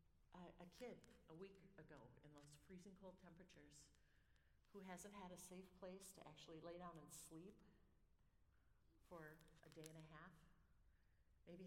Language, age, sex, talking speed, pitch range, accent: English, 50-69, female, 155 wpm, 155-185 Hz, American